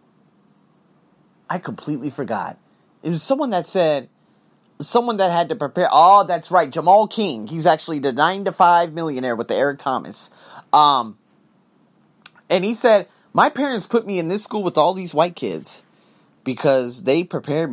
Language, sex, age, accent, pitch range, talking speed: English, male, 30-49, American, 125-185 Hz, 165 wpm